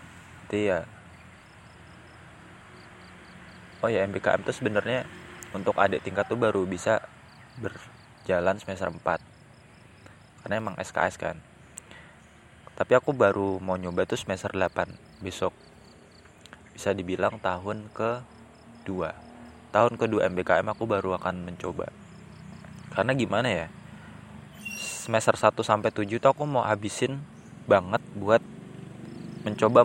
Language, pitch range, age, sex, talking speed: Indonesian, 95-115 Hz, 20-39, male, 110 wpm